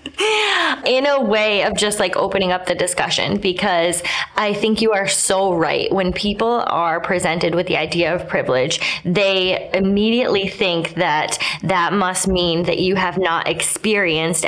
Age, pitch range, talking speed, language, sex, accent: 20-39, 175-215 Hz, 160 wpm, English, female, American